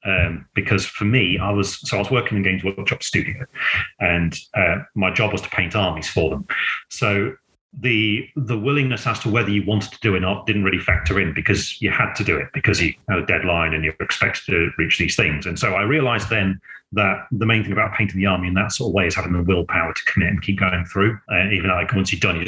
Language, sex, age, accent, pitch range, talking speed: English, male, 30-49, British, 90-110 Hz, 255 wpm